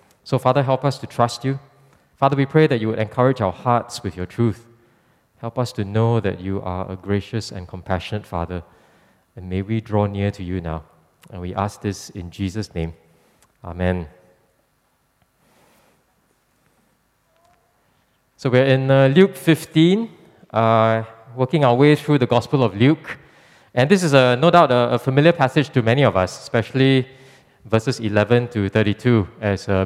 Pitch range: 110-145 Hz